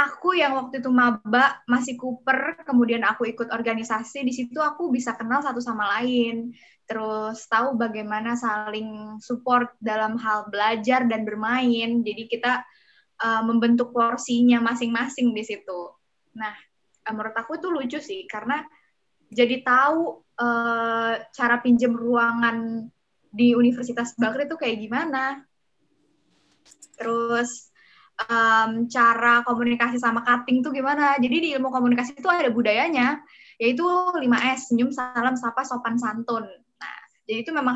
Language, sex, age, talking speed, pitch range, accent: Indonesian, female, 10-29, 130 wpm, 225-255 Hz, native